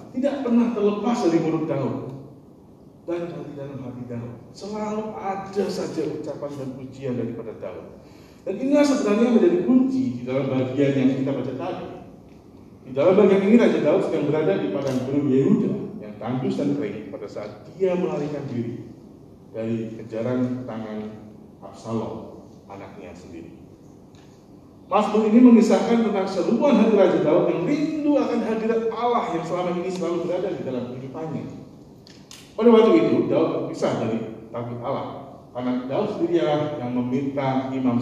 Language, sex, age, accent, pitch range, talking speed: Indonesian, male, 40-59, native, 115-190 Hz, 150 wpm